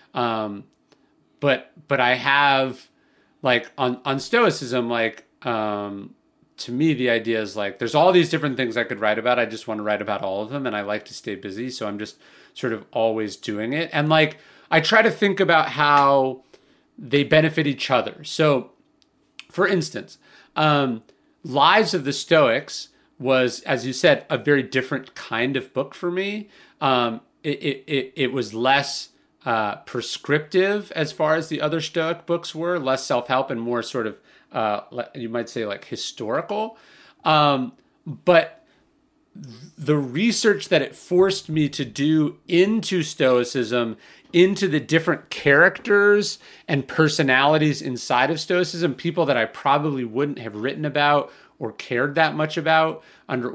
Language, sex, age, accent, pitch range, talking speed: English, male, 30-49, American, 125-160 Hz, 160 wpm